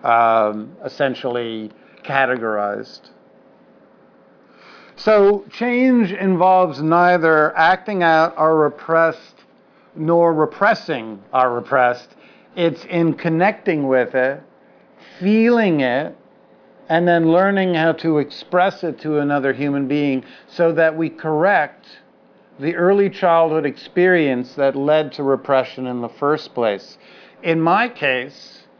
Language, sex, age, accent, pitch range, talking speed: English, male, 50-69, American, 135-170 Hz, 110 wpm